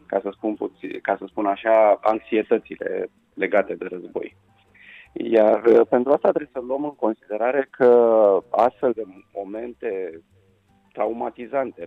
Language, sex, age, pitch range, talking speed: Romanian, male, 30-49, 110-145 Hz, 125 wpm